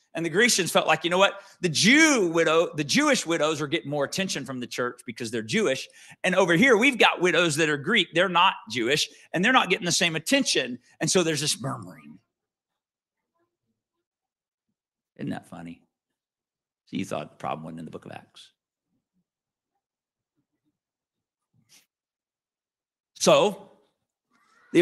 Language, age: English, 50-69